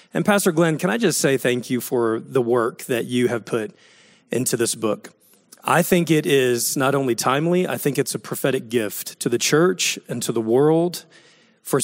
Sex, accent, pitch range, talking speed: male, American, 125-165 Hz, 205 wpm